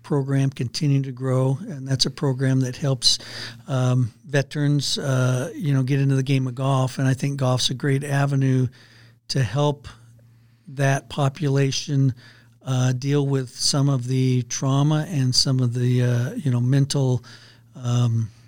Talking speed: 155 wpm